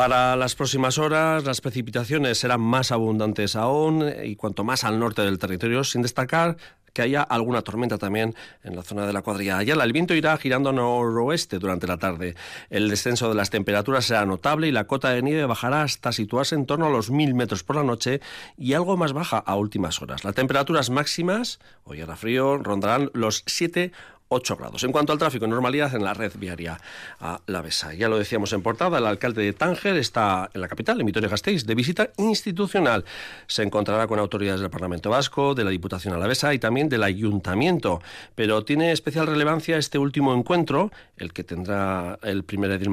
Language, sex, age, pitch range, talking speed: Spanish, male, 40-59, 100-140 Hz, 200 wpm